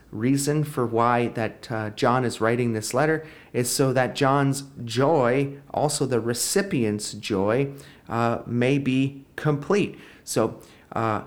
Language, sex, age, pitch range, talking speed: English, male, 30-49, 110-140 Hz, 135 wpm